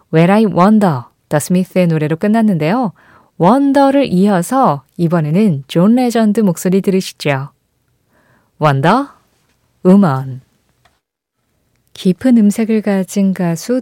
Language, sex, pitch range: Korean, female, 155-225 Hz